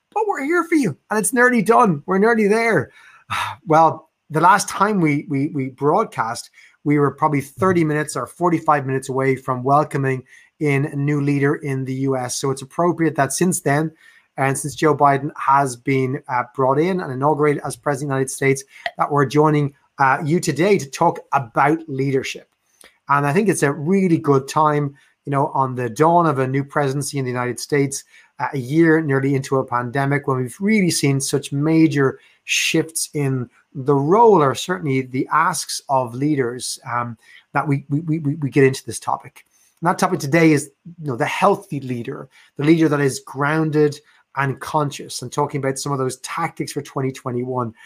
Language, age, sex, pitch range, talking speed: English, 30-49, male, 135-160 Hz, 185 wpm